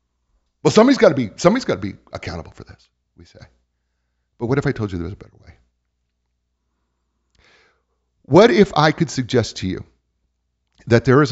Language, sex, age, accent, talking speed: English, male, 50-69, American, 185 wpm